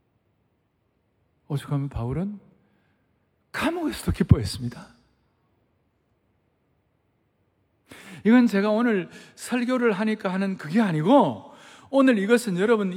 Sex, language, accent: male, Korean, native